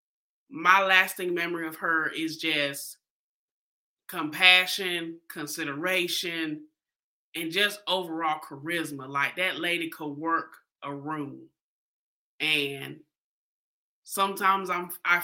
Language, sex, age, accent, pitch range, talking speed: English, male, 20-39, American, 160-210 Hz, 95 wpm